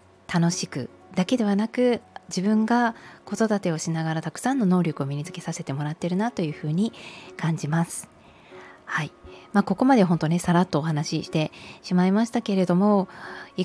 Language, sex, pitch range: Japanese, female, 150-200 Hz